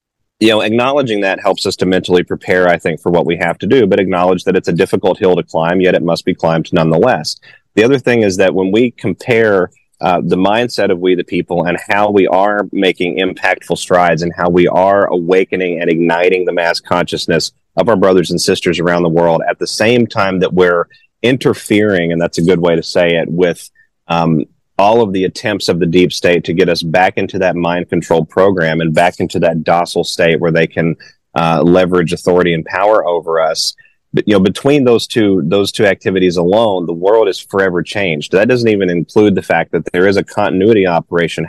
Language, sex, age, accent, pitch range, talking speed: English, male, 30-49, American, 85-100 Hz, 215 wpm